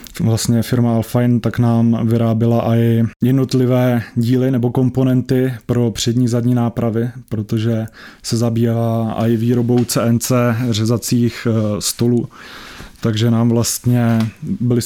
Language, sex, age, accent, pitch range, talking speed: Czech, male, 20-39, native, 115-125 Hz, 115 wpm